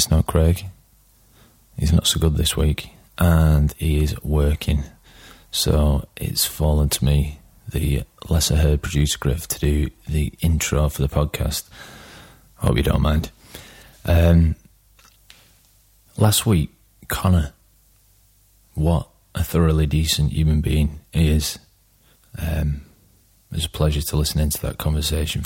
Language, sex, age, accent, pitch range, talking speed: English, male, 30-49, British, 75-85 Hz, 130 wpm